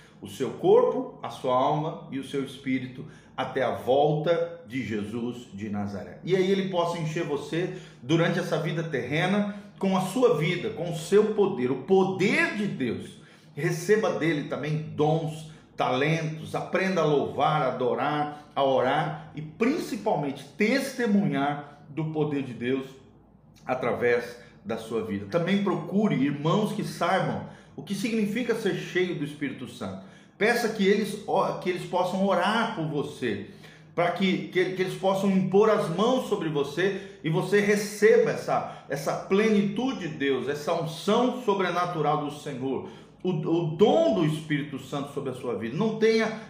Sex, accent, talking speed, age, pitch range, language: male, Brazilian, 150 wpm, 40-59, 150-200 Hz, Portuguese